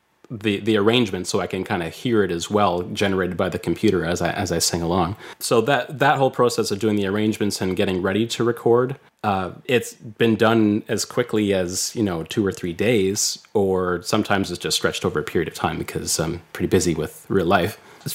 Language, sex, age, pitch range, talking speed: English, male, 30-49, 90-115 Hz, 220 wpm